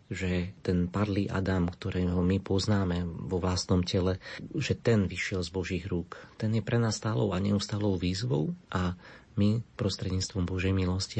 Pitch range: 90-110 Hz